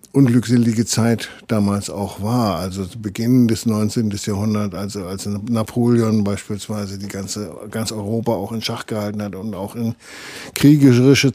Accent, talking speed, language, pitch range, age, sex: German, 150 wpm, German, 105-125 Hz, 50-69, male